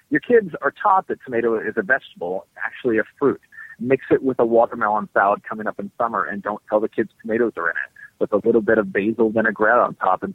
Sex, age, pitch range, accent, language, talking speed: male, 30-49, 110-140 Hz, American, English, 240 wpm